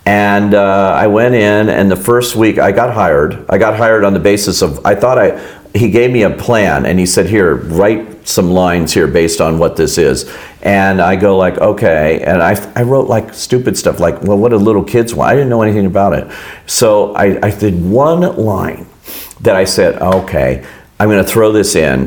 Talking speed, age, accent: 220 wpm, 50-69, American